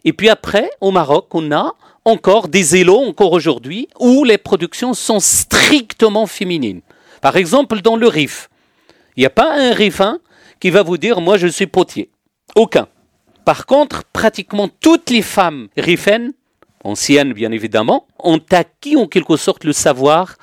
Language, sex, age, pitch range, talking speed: French, male, 40-59, 130-210 Hz, 160 wpm